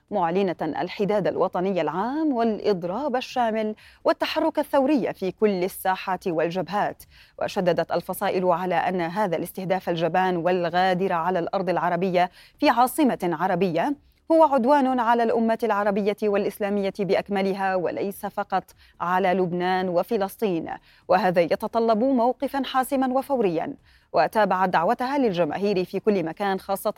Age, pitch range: 20-39, 180-235 Hz